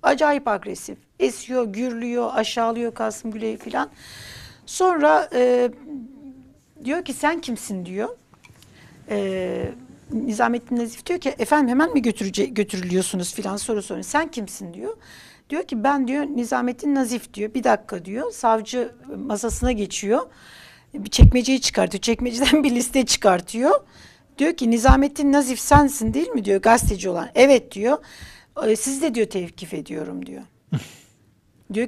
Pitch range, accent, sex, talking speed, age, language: 205-260 Hz, native, female, 130 wpm, 60-79, Turkish